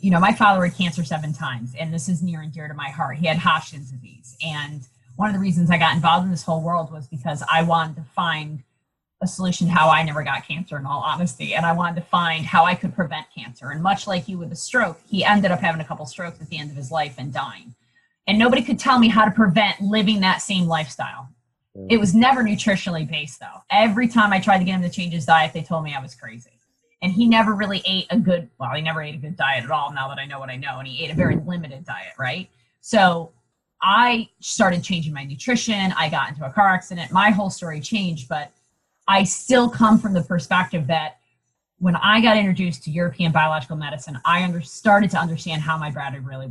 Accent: American